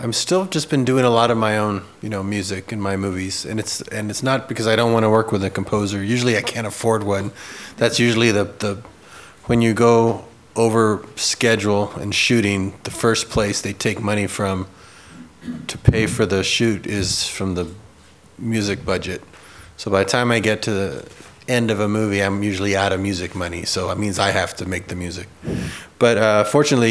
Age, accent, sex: 30-49, American, male